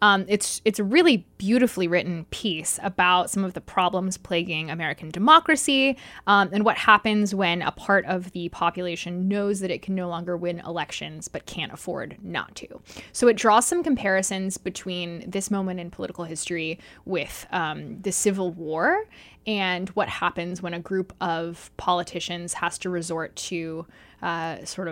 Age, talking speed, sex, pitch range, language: 20-39, 165 wpm, female, 170-205 Hz, English